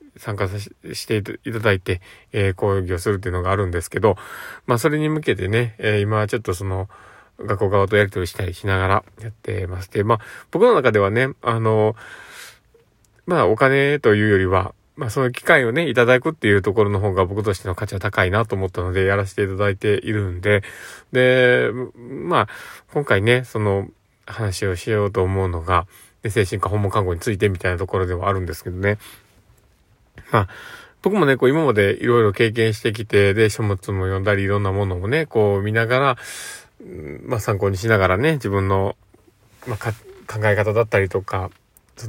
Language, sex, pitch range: Japanese, male, 95-115 Hz